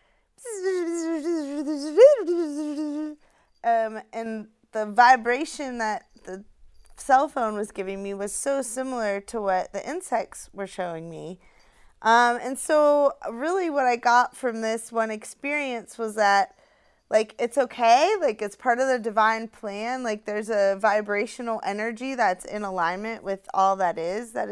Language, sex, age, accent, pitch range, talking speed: English, female, 20-39, American, 200-245 Hz, 140 wpm